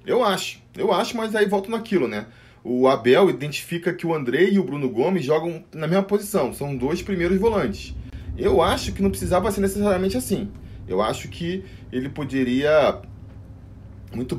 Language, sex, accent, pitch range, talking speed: Portuguese, male, Brazilian, 110-180 Hz, 170 wpm